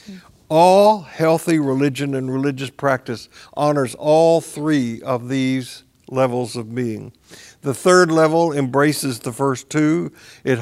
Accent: American